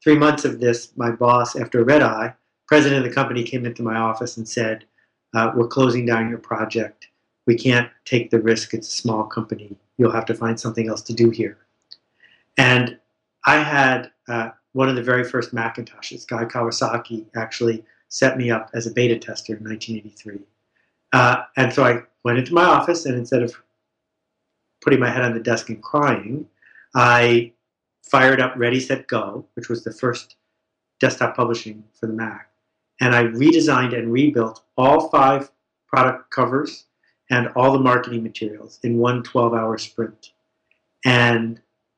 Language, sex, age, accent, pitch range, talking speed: English, male, 50-69, American, 115-125 Hz, 170 wpm